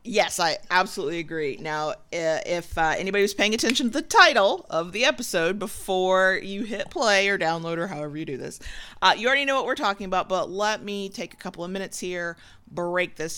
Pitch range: 165-210 Hz